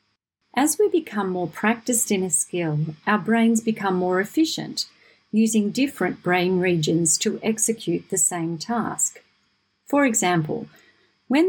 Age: 40-59